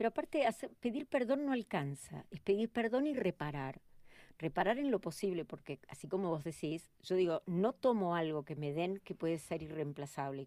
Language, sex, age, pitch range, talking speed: Spanish, female, 50-69, 165-220 Hz, 185 wpm